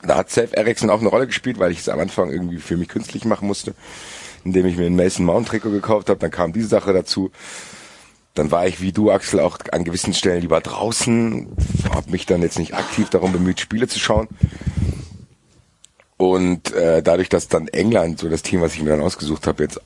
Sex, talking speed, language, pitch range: male, 220 wpm, German, 85-110 Hz